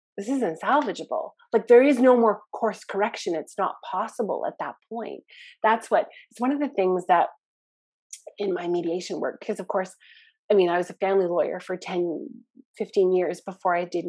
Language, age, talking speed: English, 30-49, 190 wpm